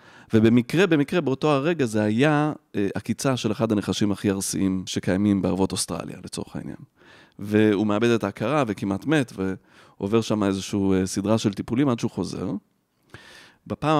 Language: Hebrew